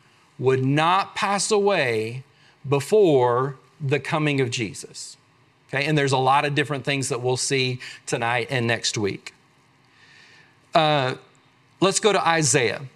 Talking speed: 135 wpm